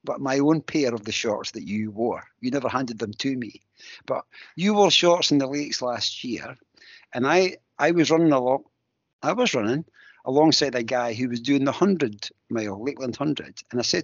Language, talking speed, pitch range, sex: English, 195 wpm, 120-150 Hz, male